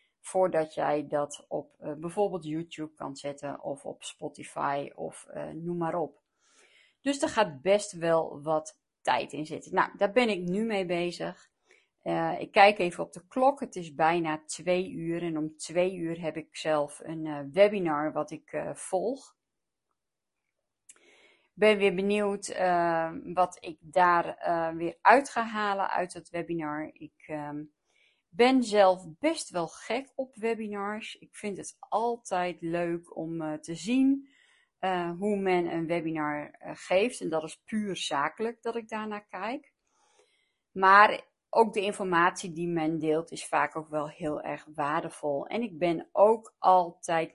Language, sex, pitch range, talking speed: Dutch, female, 160-210 Hz, 165 wpm